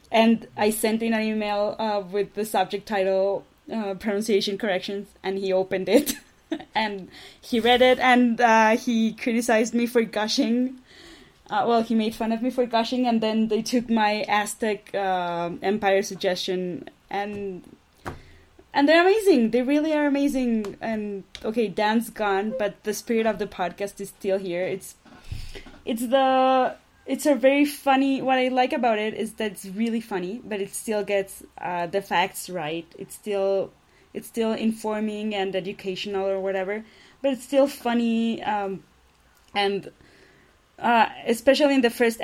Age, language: 20-39, English